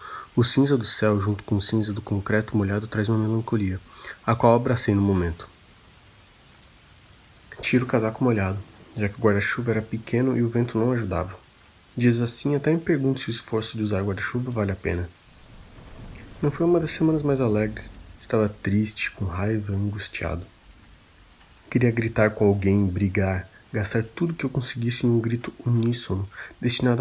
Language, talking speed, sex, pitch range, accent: Portuguese, 170 wpm, male, 100-120 Hz, Brazilian